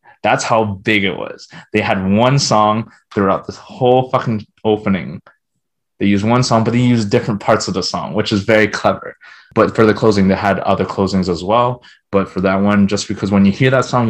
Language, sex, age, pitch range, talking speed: English, male, 20-39, 100-115 Hz, 215 wpm